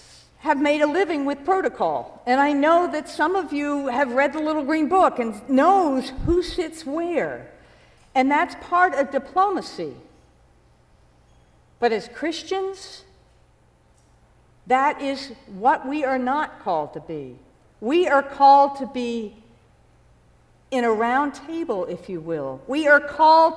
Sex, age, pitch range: female, 50-69, 230-310 Hz